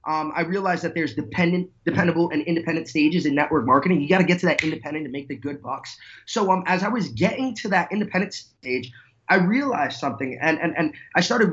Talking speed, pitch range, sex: 225 wpm, 160-205 Hz, male